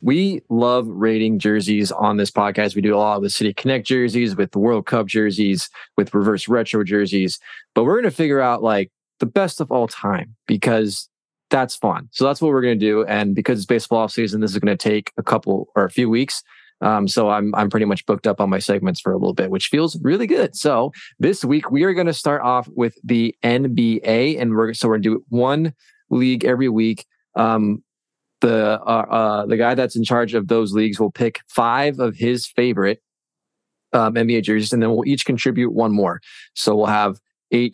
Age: 20-39